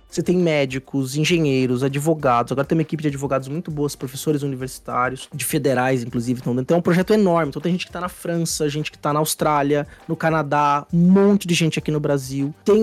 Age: 20-39